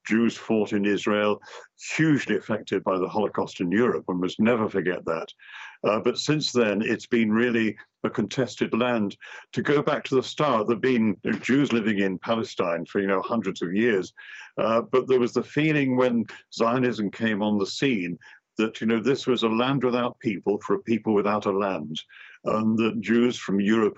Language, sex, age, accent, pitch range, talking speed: English, male, 60-79, British, 105-120 Hz, 195 wpm